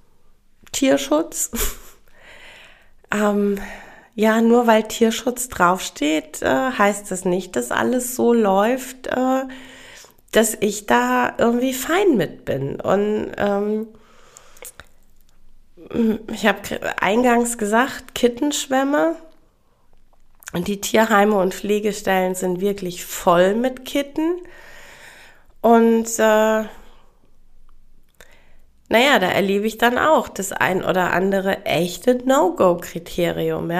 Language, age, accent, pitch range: German, 30-49, German, 185-250 Hz